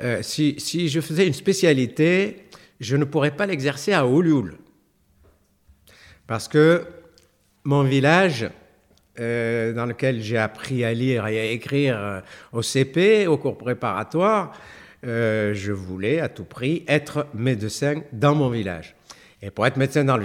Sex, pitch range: male, 100-140 Hz